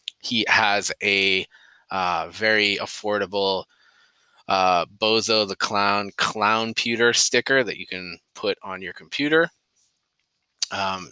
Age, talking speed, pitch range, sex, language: 20-39, 115 wpm, 95-115 Hz, male, English